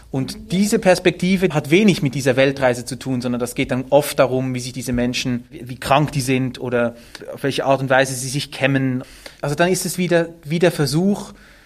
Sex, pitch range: male, 130-170 Hz